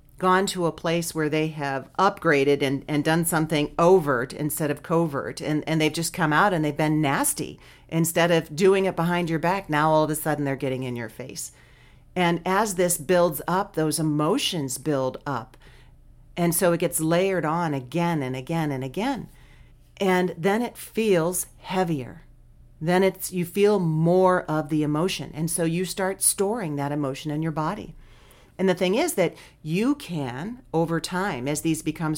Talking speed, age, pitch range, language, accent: 185 wpm, 40-59, 150-190 Hz, English, American